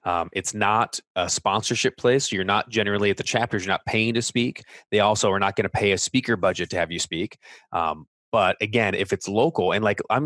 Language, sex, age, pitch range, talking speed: English, male, 20-39, 100-120 Hz, 230 wpm